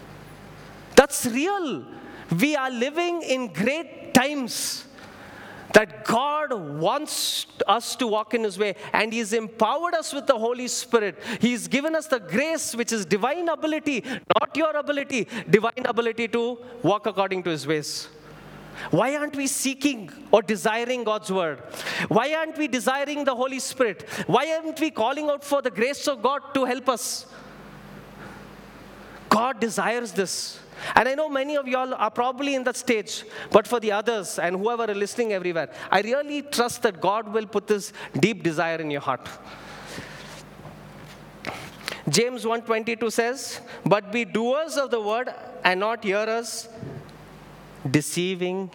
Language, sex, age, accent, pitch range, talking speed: English, male, 30-49, Indian, 195-270 Hz, 150 wpm